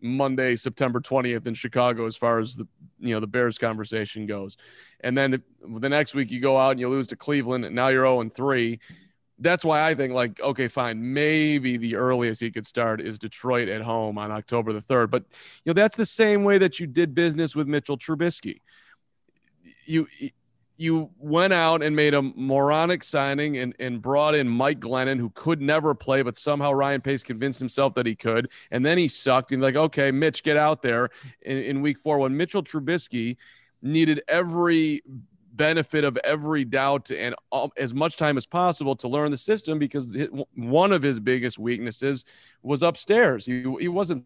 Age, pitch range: 30-49, 125-155 Hz